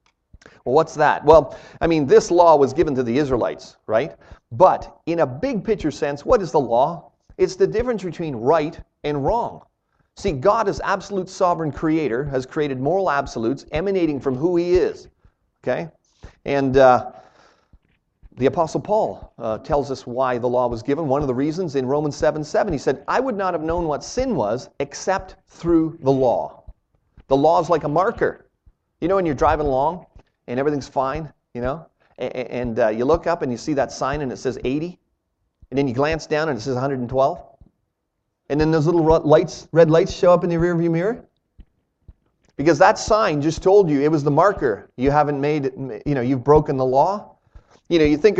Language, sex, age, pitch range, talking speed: English, male, 40-59, 135-170 Hz, 200 wpm